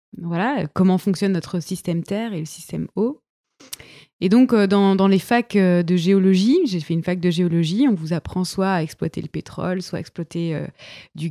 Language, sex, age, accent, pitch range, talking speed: French, female, 20-39, French, 175-215 Hz, 195 wpm